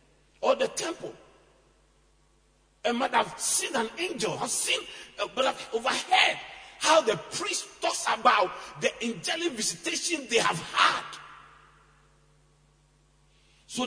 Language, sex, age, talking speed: English, male, 50-69, 115 wpm